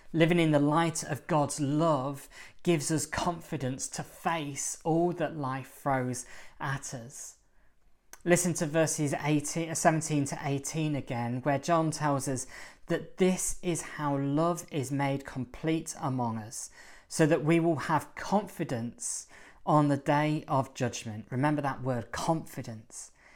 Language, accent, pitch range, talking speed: English, British, 130-155 Hz, 140 wpm